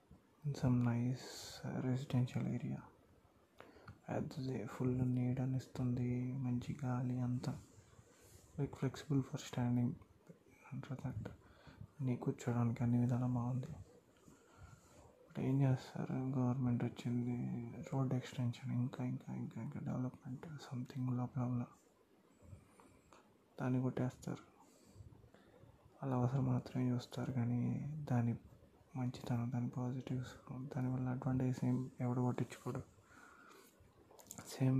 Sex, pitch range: male, 125-130 Hz